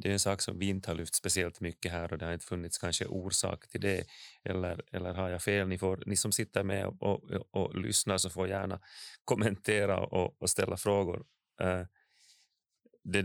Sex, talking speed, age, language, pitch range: male, 205 wpm, 30-49, Swedish, 95-110 Hz